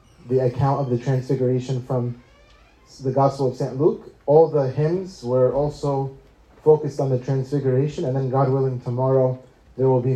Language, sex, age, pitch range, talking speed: English, male, 20-39, 125-150 Hz, 165 wpm